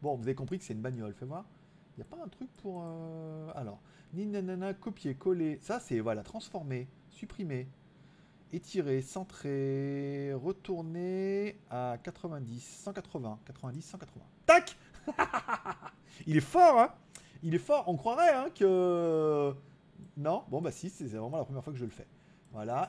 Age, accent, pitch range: 30-49, French, 135-190 Hz